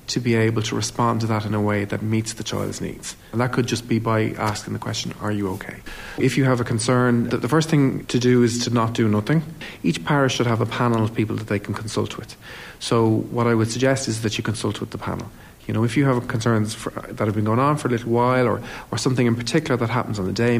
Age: 40-59